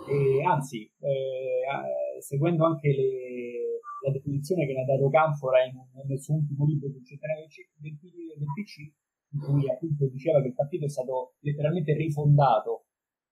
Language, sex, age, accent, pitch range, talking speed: Italian, male, 30-49, native, 140-180 Hz, 150 wpm